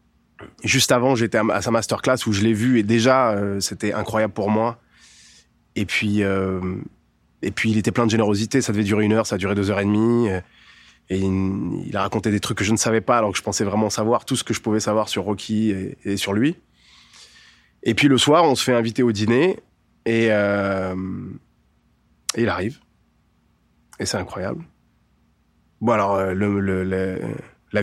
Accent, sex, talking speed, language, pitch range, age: French, male, 200 wpm, French, 95-115 Hz, 20-39